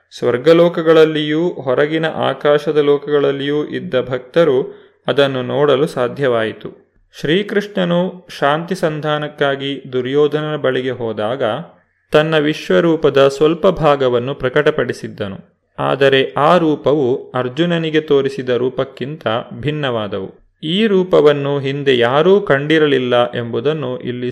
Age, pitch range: 30-49, 125-150 Hz